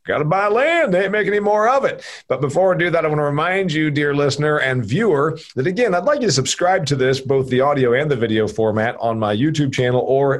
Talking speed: 265 wpm